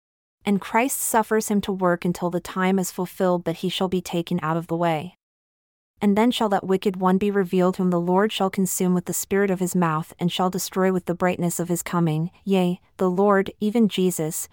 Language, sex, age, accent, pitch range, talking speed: English, female, 30-49, American, 175-200 Hz, 220 wpm